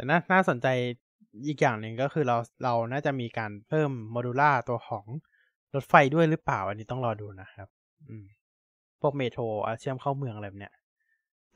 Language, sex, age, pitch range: Thai, male, 20-39, 115-145 Hz